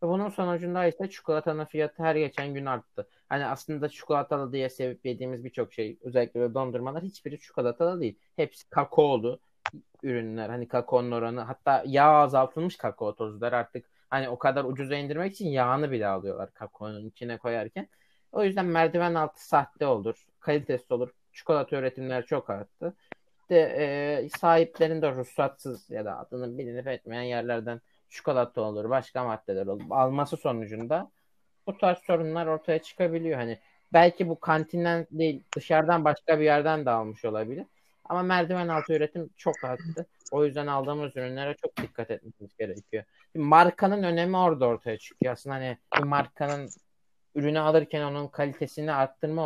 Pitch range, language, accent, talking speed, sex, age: 125-165 Hz, Turkish, native, 150 wpm, male, 30-49